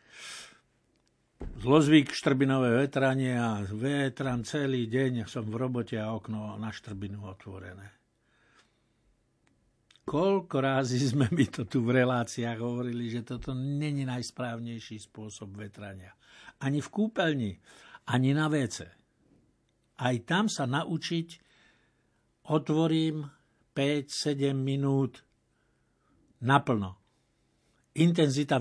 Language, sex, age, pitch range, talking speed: Slovak, male, 60-79, 115-145 Hz, 95 wpm